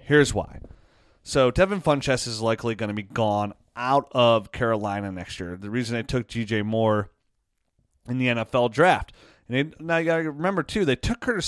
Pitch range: 110-140 Hz